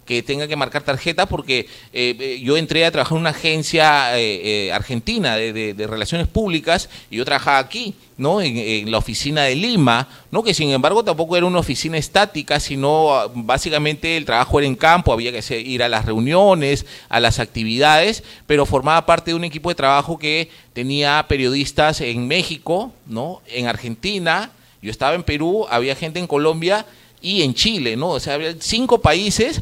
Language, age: Spanish, 40-59